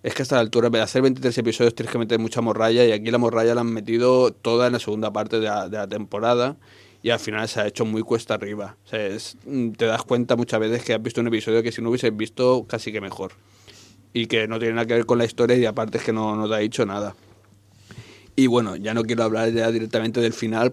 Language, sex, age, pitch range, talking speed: Spanish, male, 30-49, 110-125 Hz, 265 wpm